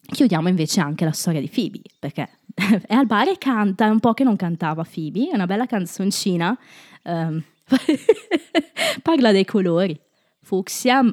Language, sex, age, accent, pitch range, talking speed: Italian, female, 20-39, native, 165-240 Hz, 155 wpm